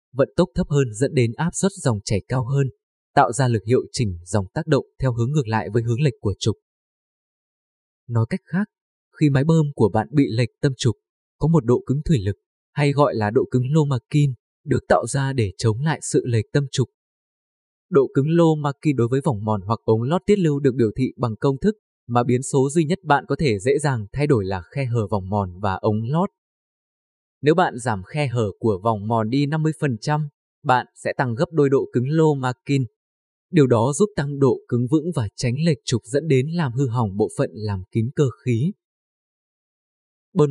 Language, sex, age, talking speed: Vietnamese, male, 20-39, 210 wpm